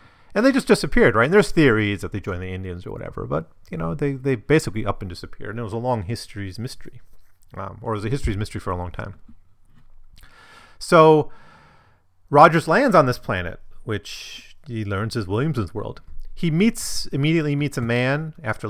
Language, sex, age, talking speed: English, male, 30-49, 195 wpm